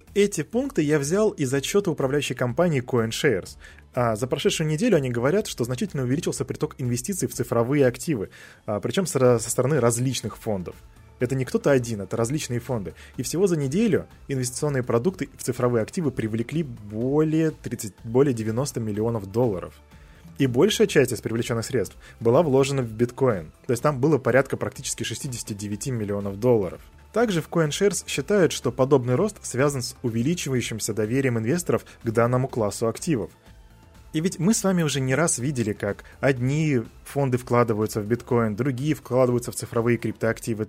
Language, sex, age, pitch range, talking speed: Russian, male, 20-39, 115-140 Hz, 155 wpm